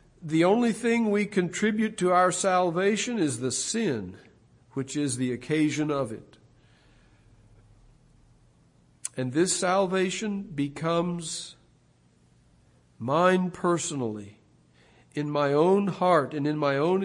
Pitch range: 130-175 Hz